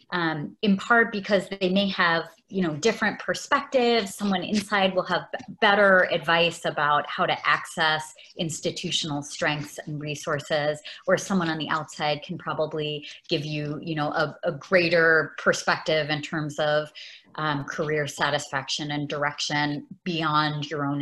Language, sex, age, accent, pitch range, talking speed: English, female, 30-49, American, 155-200 Hz, 145 wpm